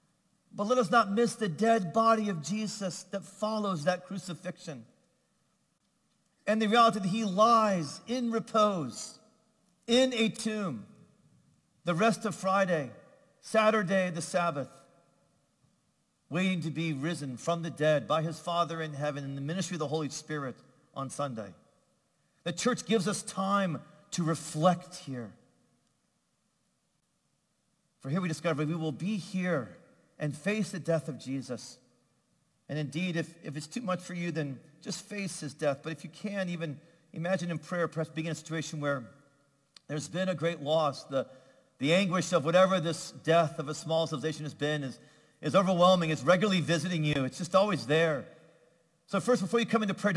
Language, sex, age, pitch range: English, male, 40-59, 155-200 Hz